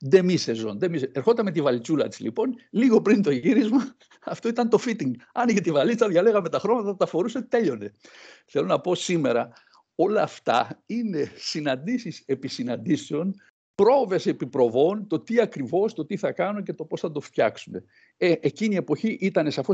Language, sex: Greek, male